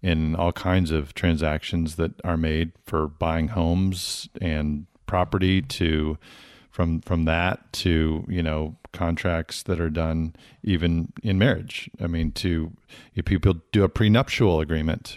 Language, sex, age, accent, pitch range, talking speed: English, male, 40-59, American, 80-100 Hz, 140 wpm